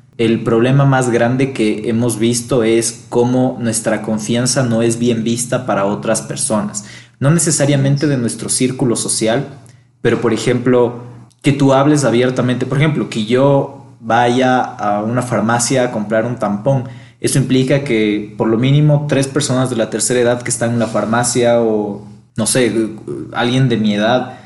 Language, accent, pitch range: Spanish, Mexican, 110-130 Hz